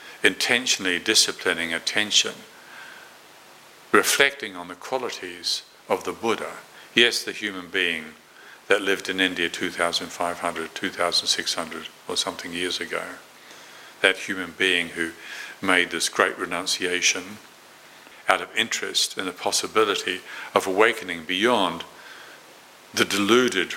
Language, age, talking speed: English, 50-69, 110 wpm